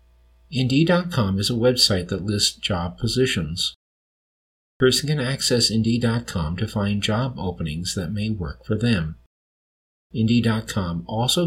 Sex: male